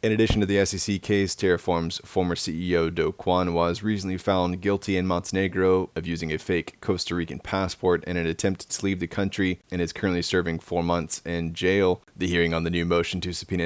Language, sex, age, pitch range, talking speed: English, male, 20-39, 85-95 Hz, 205 wpm